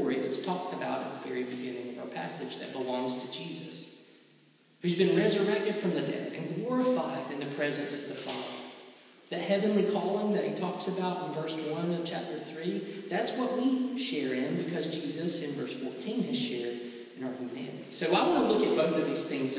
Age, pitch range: 40-59, 130-205 Hz